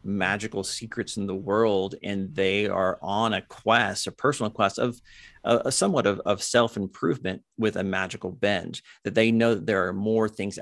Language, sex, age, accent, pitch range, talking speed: English, male, 40-59, American, 95-110 Hz, 190 wpm